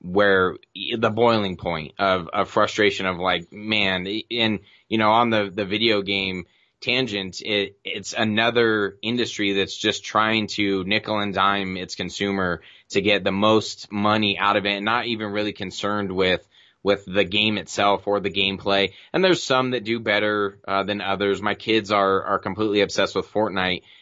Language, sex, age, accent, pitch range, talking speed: English, male, 20-39, American, 95-110 Hz, 175 wpm